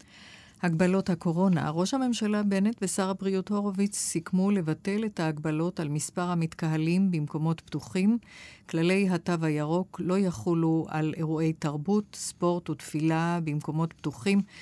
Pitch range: 160-185 Hz